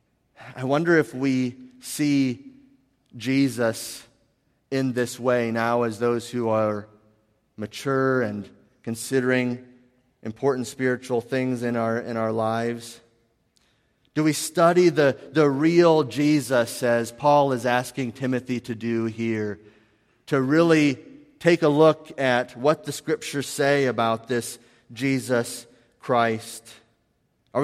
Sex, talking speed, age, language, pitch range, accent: male, 120 wpm, 30-49, English, 120-155 Hz, American